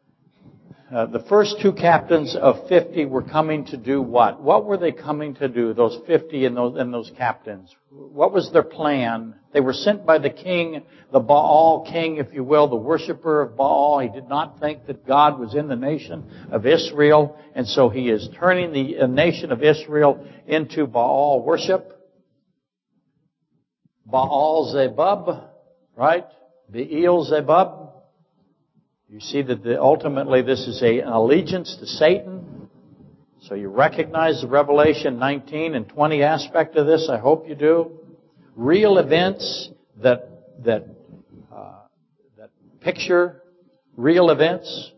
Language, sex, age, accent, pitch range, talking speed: English, male, 60-79, American, 130-165 Hz, 145 wpm